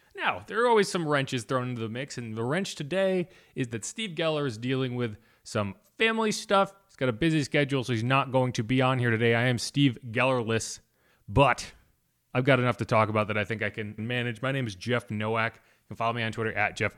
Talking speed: 240 wpm